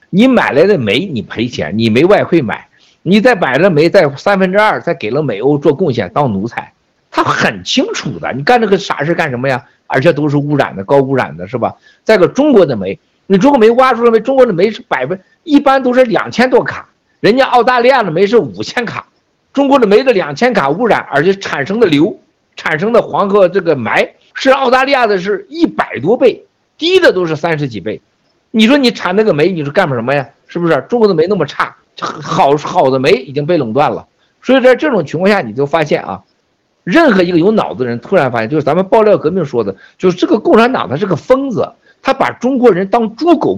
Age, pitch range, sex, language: 50-69, 145-245 Hz, male, Chinese